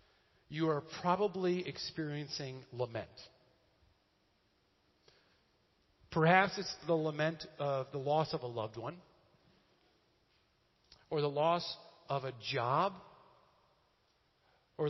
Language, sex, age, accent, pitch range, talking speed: English, male, 40-59, American, 155-210 Hz, 95 wpm